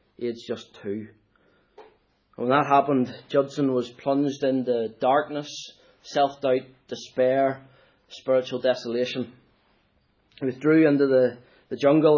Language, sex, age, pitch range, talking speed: English, male, 20-39, 110-140 Hz, 105 wpm